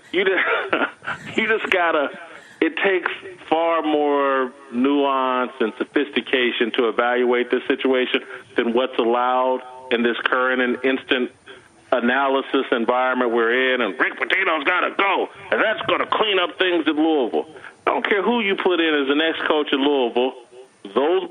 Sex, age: male, 40-59